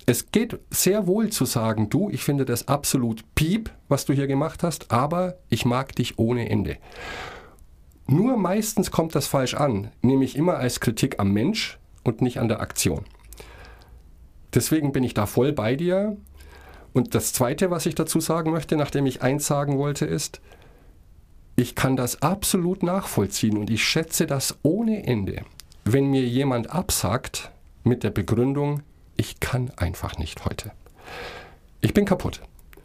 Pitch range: 105-160 Hz